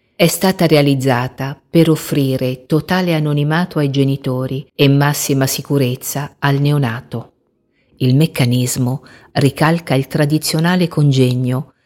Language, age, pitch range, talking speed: Italian, 50-69, 130-155 Hz, 100 wpm